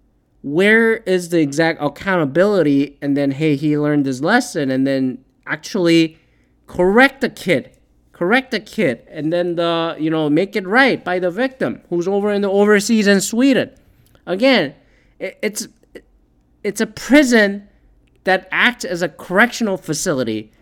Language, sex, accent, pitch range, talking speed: English, male, American, 140-210 Hz, 145 wpm